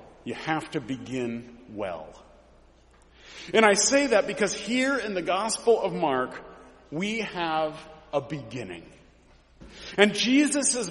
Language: English